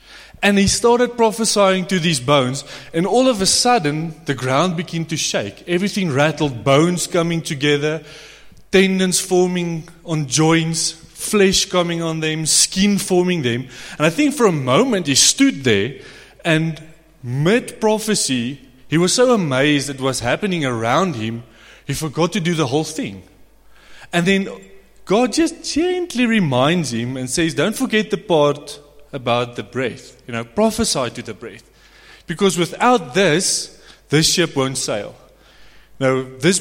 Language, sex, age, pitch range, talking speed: English, male, 20-39, 130-190 Hz, 150 wpm